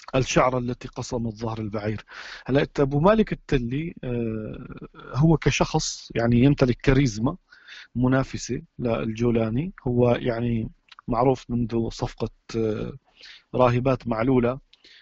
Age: 40-59